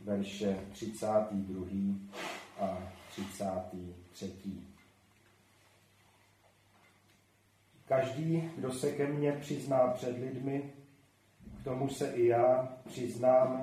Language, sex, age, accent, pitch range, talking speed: Czech, male, 40-59, native, 100-130 Hz, 80 wpm